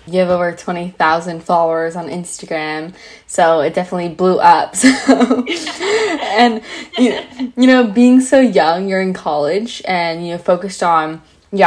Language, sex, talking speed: English, female, 140 wpm